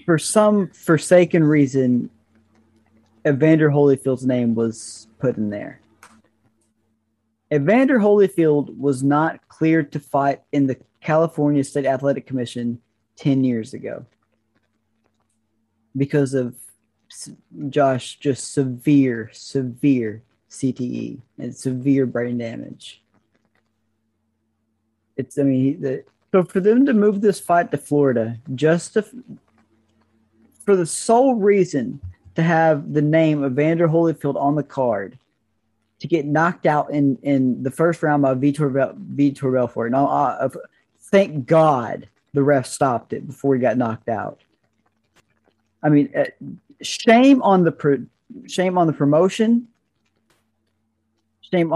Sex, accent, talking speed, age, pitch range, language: male, American, 120 wpm, 30-49, 110-160 Hz, English